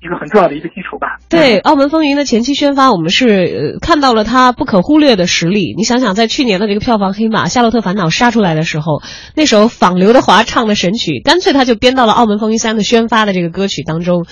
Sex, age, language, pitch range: female, 20-39, Chinese, 195-270 Hz